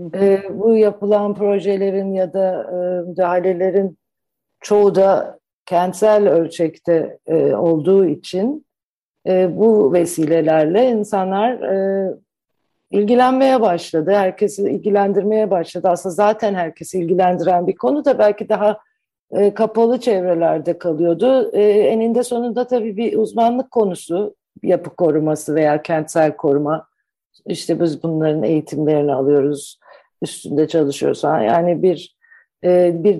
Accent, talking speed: native, 110 wpm